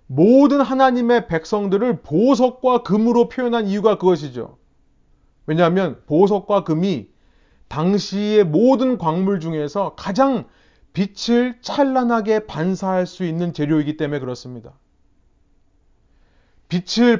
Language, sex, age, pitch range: Korean, male, 30-49, 160-240 Hz